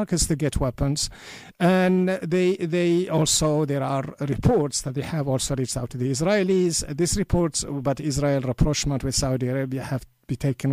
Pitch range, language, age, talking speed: 130-160 Hz, English, 50-69, 175 wpm